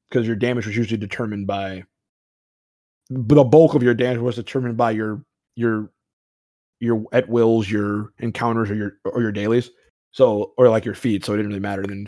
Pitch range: 105-130 Hz